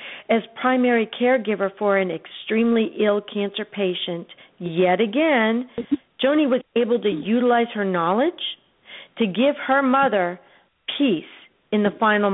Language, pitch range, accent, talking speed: English, 195-255 Hz, American, 125 wpm